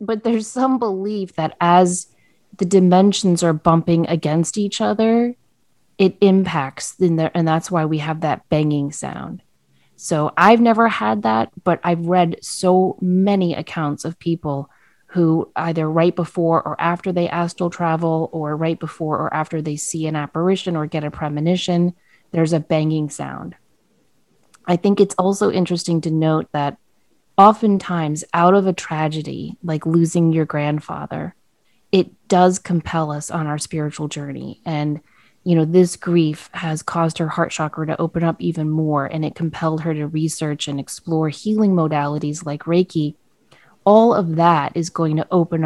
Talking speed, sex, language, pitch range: 160 wpm, female, English, 155-180 Hz